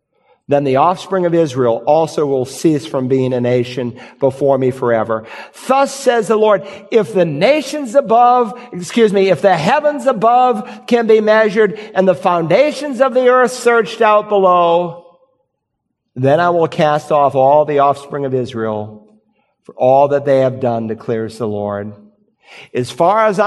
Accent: American